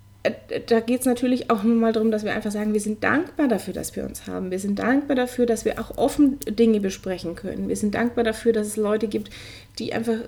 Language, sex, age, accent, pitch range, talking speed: German, female, 20-39, German, 205-240 Hz, 240 wpm